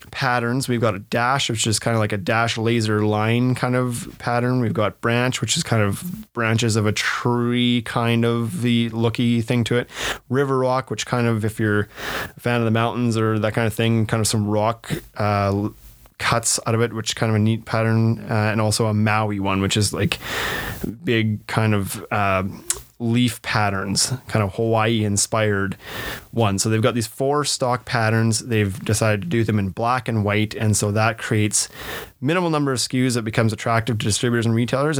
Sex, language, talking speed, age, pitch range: male, English, 205 wpm, 20-39, 105-120 Hz